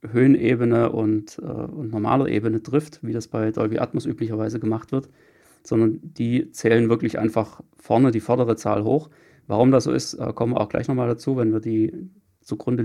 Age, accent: 30-49, German